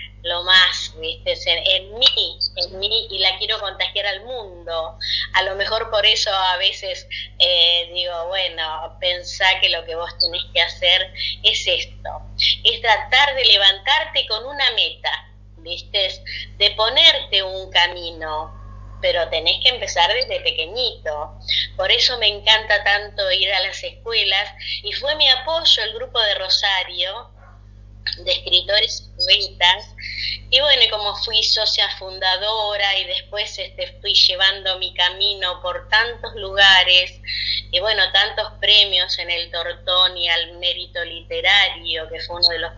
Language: Spanish